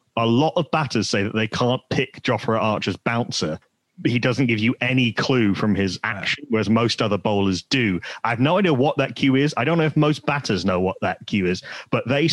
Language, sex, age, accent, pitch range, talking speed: English, male, 30-49, British, 105-135 Hz, 230 wpm